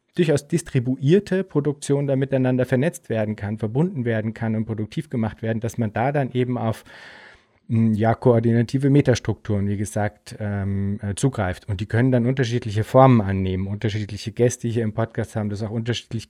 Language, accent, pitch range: German, German, 110-135 Hz